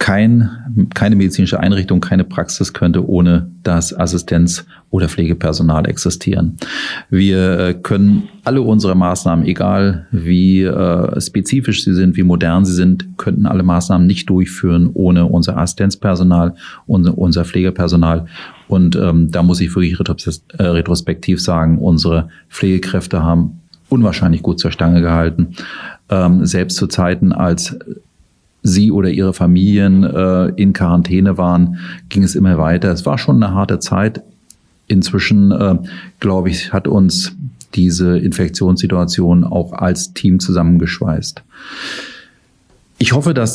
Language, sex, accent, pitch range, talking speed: German, male, German, 90-105 Hz, 130 wpm